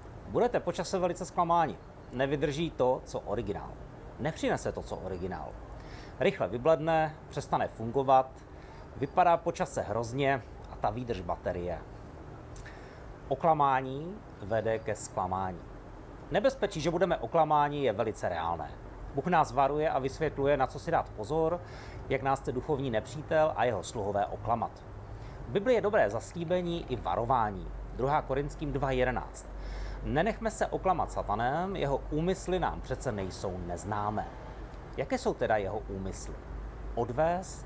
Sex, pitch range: male, 110-160 Hz